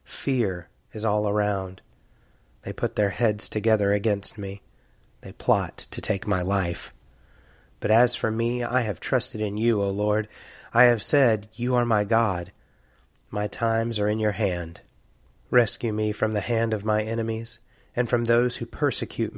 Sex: male